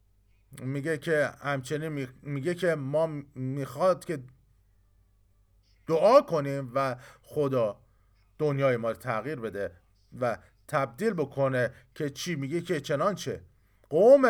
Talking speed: 120 wpm